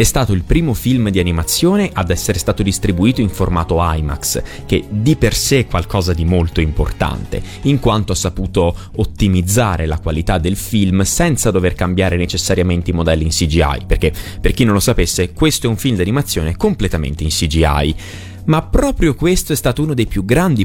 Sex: male